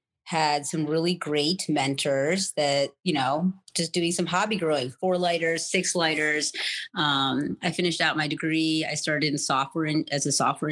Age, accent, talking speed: 30-49, American, 170 wpm